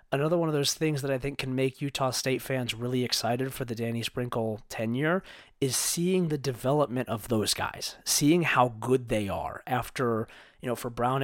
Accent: American